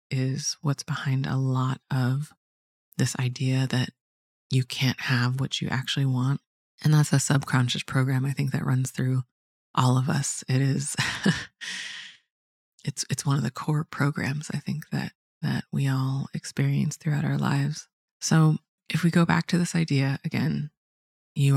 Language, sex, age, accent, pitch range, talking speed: English, female, 20-39, American, 125-150 Hz, 160 wpm